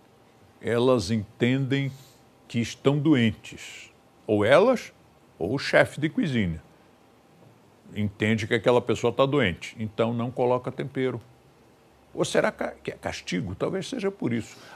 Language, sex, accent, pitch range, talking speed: Portuguese, male, Brazilian, 115-145 Hz, 125 wpm